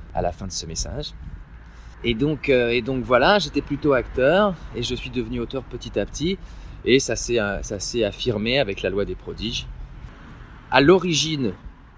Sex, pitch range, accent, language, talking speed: male, 90-135 Hz, French, French, 175 wpm